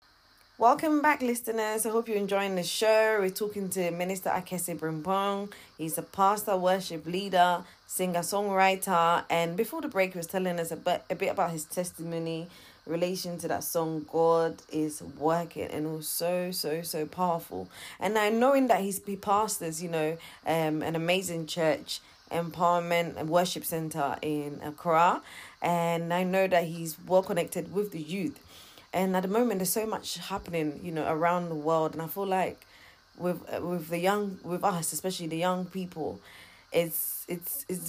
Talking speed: 170 wpm